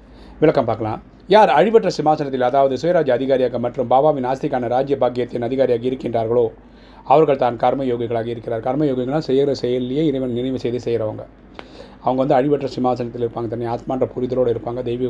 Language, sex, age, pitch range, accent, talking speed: Tamil, male, 30-49, 120-145 Hz, native, 145 wpm